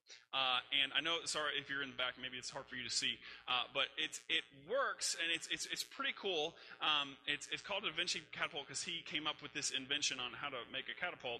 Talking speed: 260 wpm